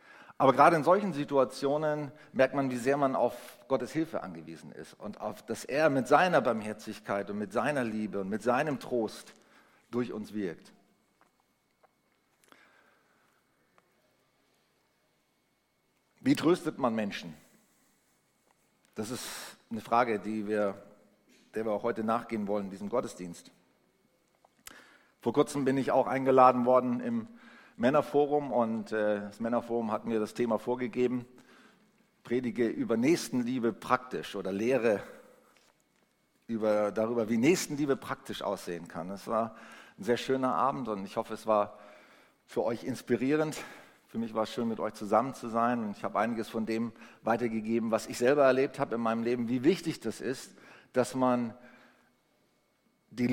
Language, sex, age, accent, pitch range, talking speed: German, male, 50-69, German, 110-140 Hz, 145 wpm